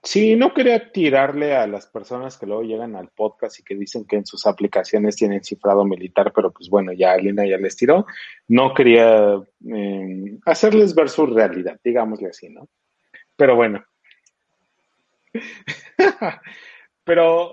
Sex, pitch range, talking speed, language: male, 110-165 Hz, 145 wpm, Spanish